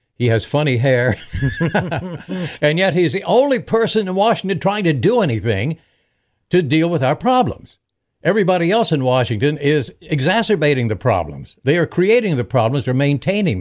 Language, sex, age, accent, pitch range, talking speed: English, male, 60-79, American, 120-180 Hz, 160 wpm